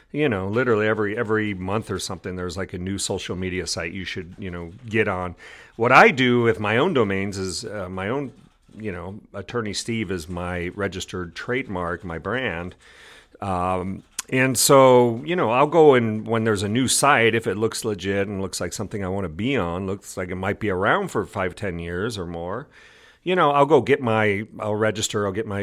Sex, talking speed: male, 215 wpm